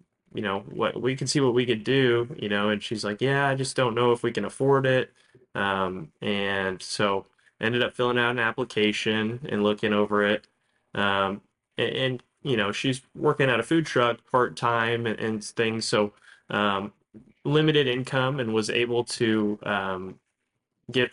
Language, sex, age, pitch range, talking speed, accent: English, male, 20-39, 100-120 Hz, 180 wpm, American